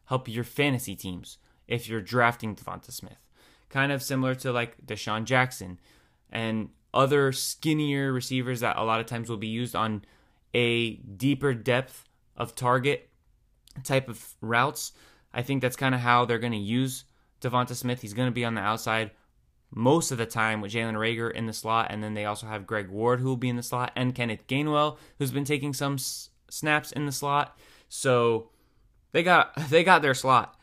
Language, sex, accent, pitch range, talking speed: English, male, American, 115-140 Hz, 190 wpm